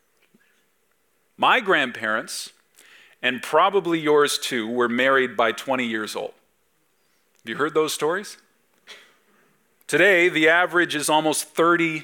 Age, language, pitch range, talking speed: 40-59, English, 125-165 Hz, 115 wpm